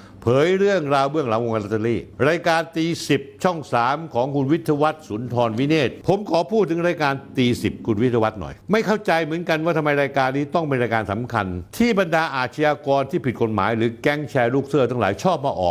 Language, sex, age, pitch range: Thai, male, 60-79, 115-165 Hz